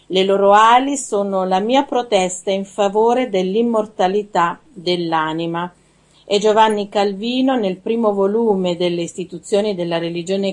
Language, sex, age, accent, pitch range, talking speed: Italian, female, 50-69, native, 180-220 Hz, 120 wpm